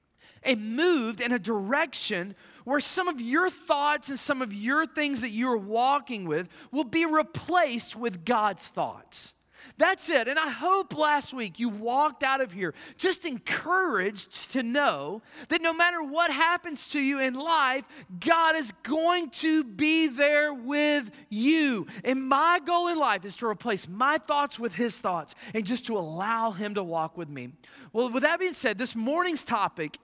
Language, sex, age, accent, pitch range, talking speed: English, male, 30-49, American, 225-310 Hz, 180 wpm